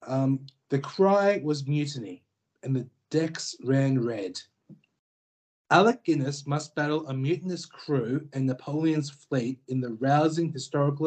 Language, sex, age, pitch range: English, male, 30-49, 130-155 Hz